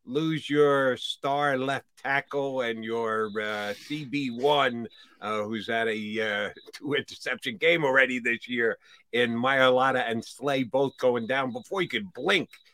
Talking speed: 145 wpm